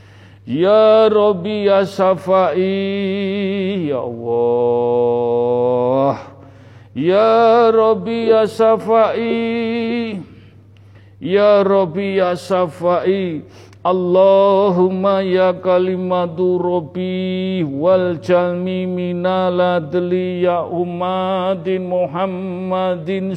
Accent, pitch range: Indian, 140-200 Hz